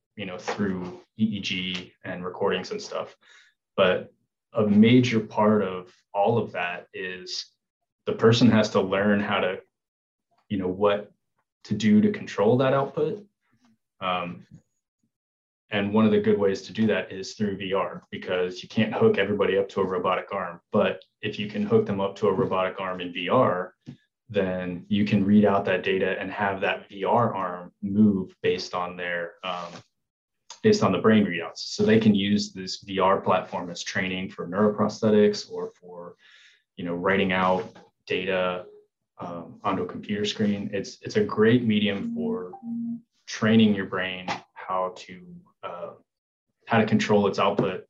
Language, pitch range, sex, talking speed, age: English, 95-125 Hz, male, 165 wpm, 20-39